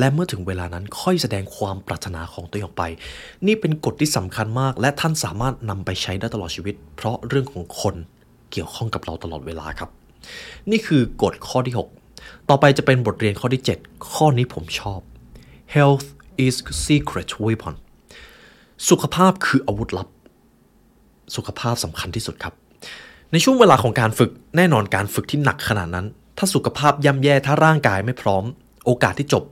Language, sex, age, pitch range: Thai, male, 20-39, 95-140 Hz